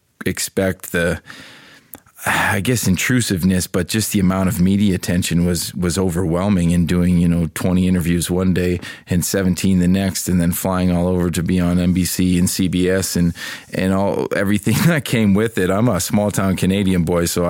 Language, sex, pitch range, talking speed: English, male, 90-105 Hz, 180 wpm